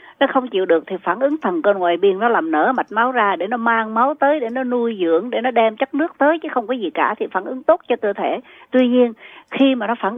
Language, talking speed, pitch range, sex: Vietnamese, 295 wpm, 205-290 Hz, female